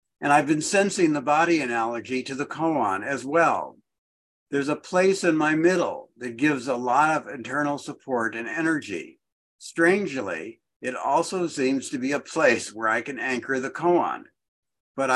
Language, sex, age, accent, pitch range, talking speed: English, male, 60-79, American, 130-175 Hz, 165 wpm